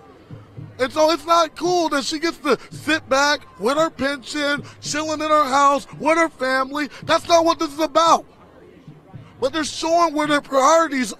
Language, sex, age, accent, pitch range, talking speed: English, male, 20-39, American, 265-325 Hz, 175 wpm